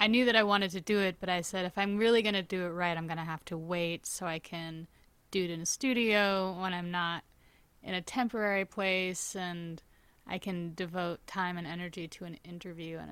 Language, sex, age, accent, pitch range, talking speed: English, female, 20-39, American, 175-205 Hz, 235 wpm